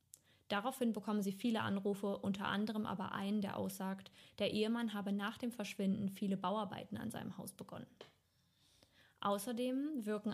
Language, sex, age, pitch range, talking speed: German, female, 20-39, 190-220 Hz, 145 wpm